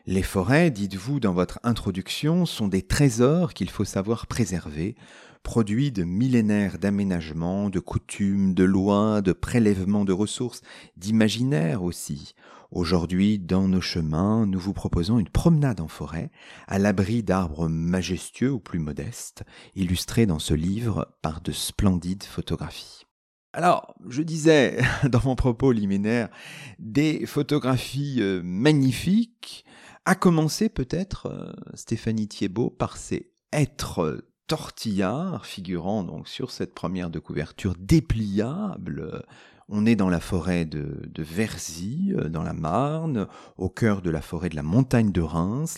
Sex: male